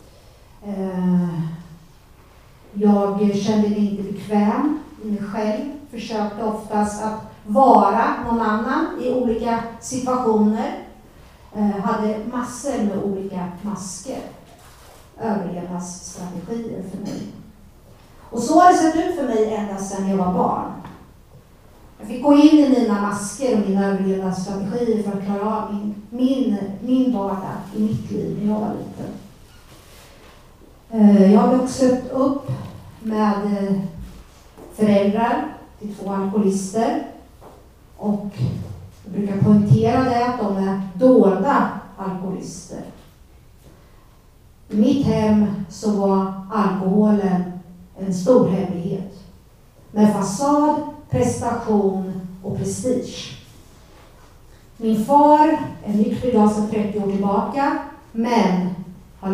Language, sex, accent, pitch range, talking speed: Swedish, female, native, 195-235 Hz, 110 wpm